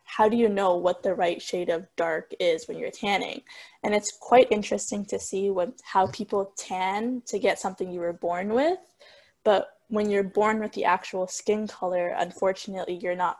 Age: 10-29